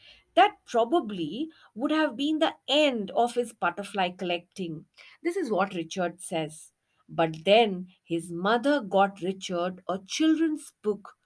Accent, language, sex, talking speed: Indian, English, female, 135 wpm